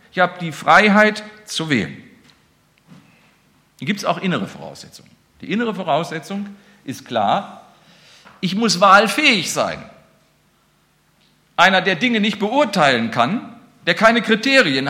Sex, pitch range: male, 130-200 Hz